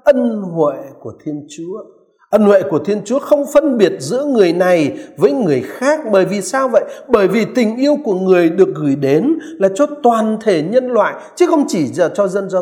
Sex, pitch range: male, 180-285 Hz